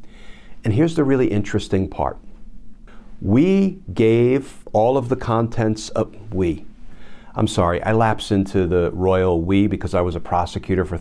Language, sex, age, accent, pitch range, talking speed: English, male, 50-69, American, 95-125 Hz, 155 wpm